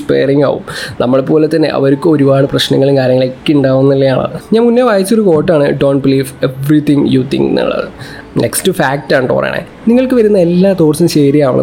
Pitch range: 140-190 Hz